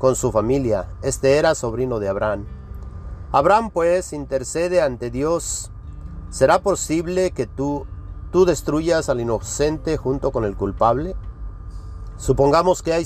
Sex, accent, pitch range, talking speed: male, Mexican, 95-150 Hz, 130 wpm